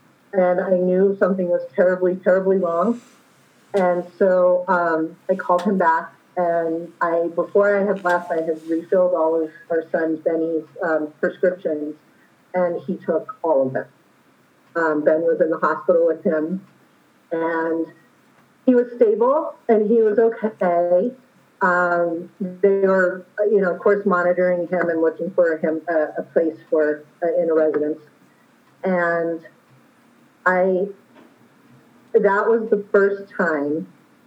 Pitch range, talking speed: 160-190 Hz, 140 wpm